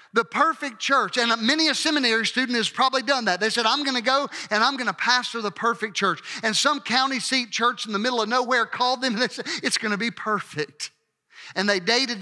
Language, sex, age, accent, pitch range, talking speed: English, male, 50-69, American, 220-275 Hz, 240 wpm